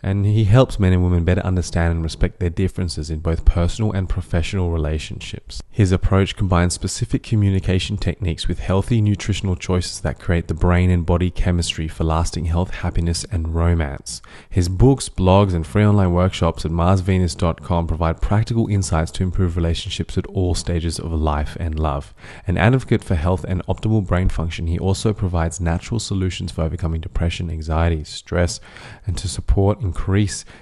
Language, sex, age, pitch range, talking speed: English, male, 20-39, 85-95 Hz, 170 wpm